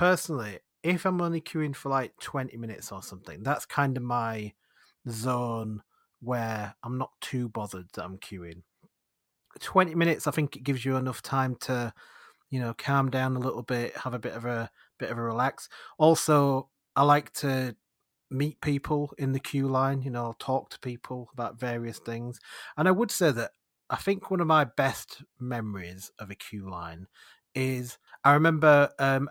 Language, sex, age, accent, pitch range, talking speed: English, male, 30-49, British, 115-140 Hz, 180 wpm